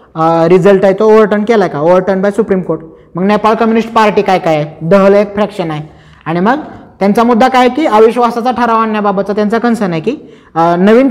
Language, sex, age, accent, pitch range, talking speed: Marathi, male, 20-39, native, 175-225 Hz, 185 wpm